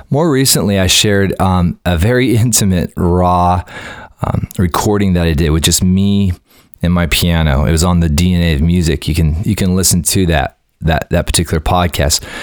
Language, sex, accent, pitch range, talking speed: English, male, American, 80-95 Hz, 185 wpm